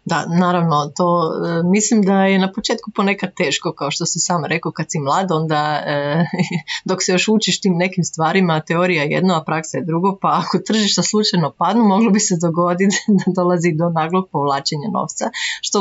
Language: Croatian